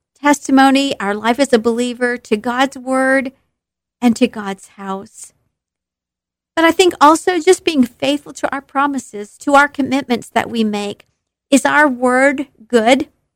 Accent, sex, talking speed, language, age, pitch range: American, female, 150 wpm, English, 50-69, 235-290 Hz